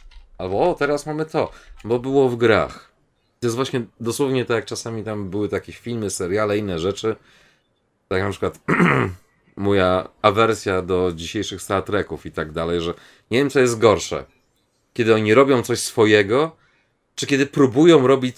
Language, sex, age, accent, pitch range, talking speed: Polish, male, 30-49, native, 90-115 Hz, 165 wpm